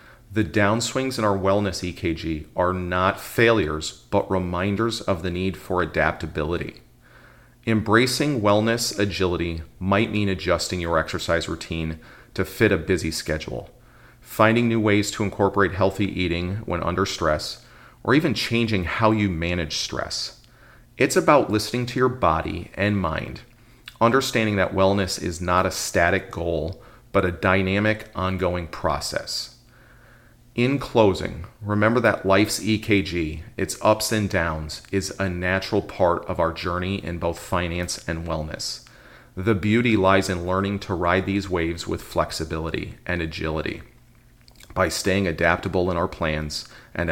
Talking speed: 140 wpm